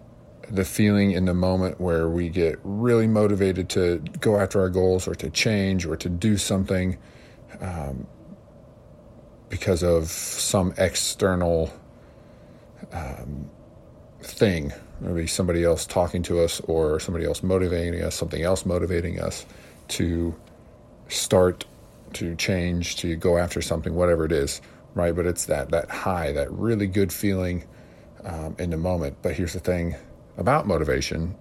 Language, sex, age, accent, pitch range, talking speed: English, male, 40-59, American, 85-95 Hz, 145 wpm